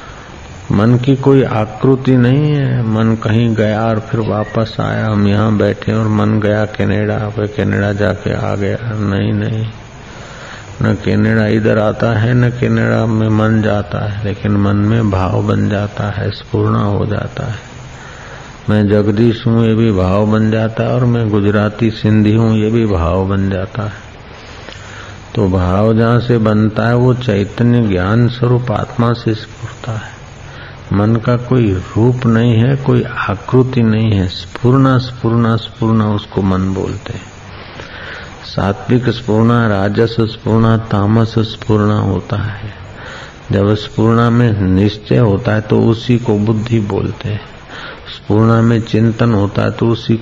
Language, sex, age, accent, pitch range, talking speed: Hindi, male, 50-69, native, 105-115 Hz, 155 wpm